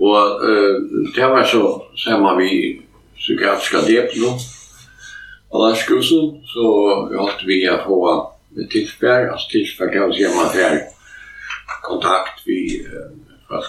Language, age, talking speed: Danish, 60-79, 160 wpm